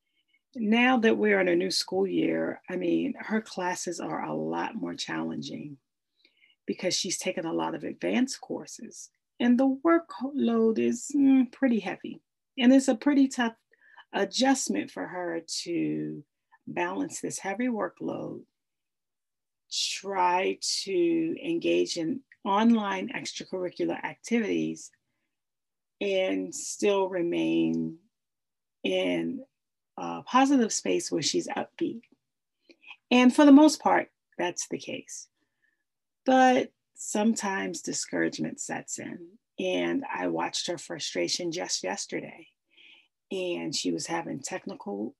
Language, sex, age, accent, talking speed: English, female, 40-59, American, 115 wpm